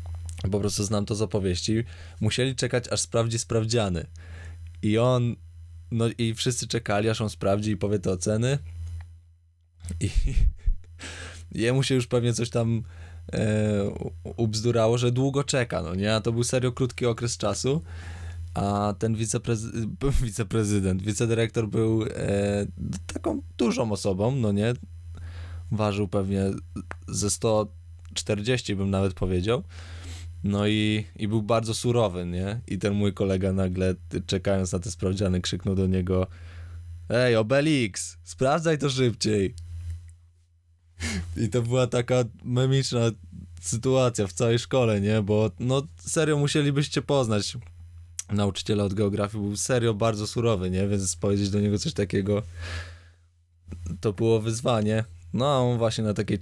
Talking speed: 135 wpm